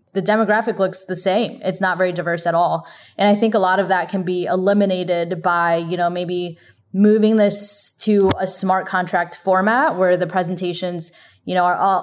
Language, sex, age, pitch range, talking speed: English, female, 10-29, 175-200 Hz, 190 wpm